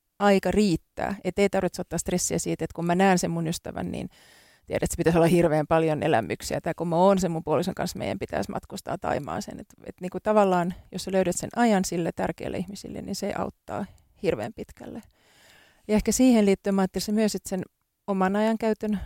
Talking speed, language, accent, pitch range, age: 200 wpm, Finnish, native, 175-210 Hz, 30-49